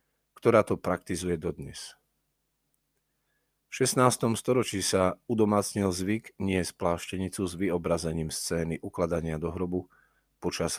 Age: 40-59